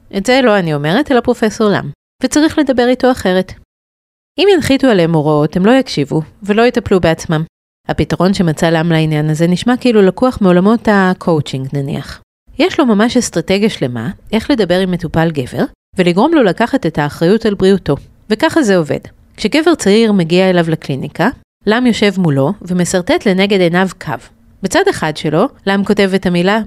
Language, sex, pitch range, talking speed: Hebrew, female, 160-225 Hz, 160 wpm